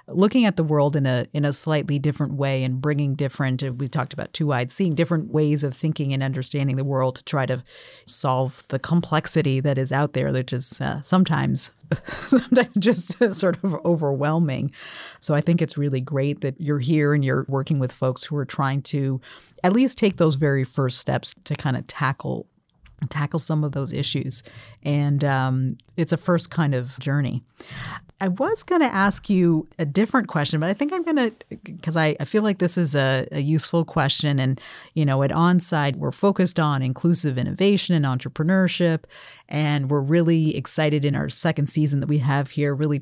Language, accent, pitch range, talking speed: English, American, 135-170 Hz, 195 wpm